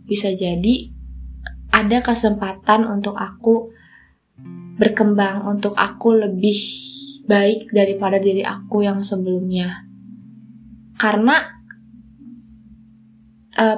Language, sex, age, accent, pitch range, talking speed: Indonesian, female, 20-39, native, 185-220 Hz, 80 wpm